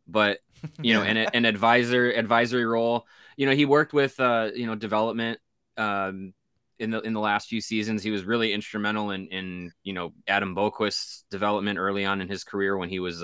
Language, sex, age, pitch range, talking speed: English, male, 20-39, 95-115 Hz, 200 wpm